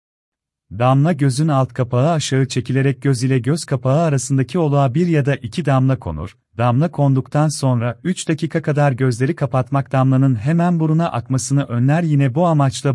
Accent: native